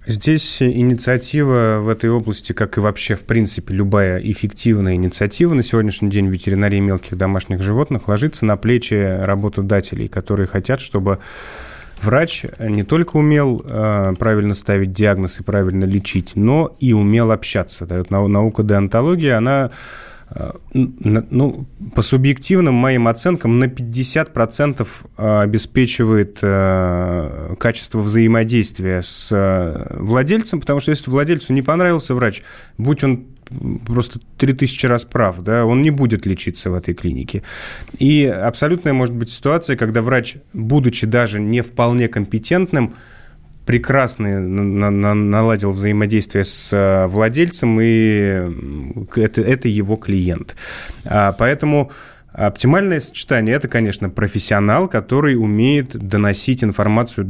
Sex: male